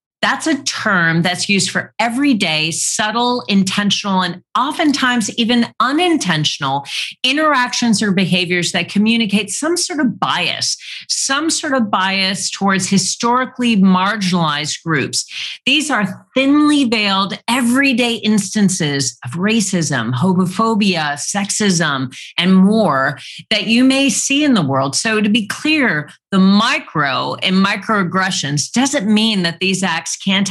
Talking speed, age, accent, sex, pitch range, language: 125 wpm, 40-59, American, female, 175-235 Hz, English